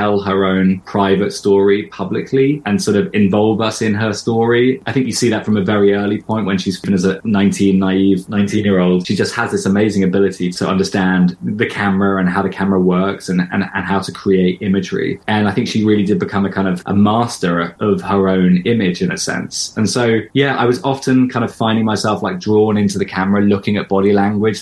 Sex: male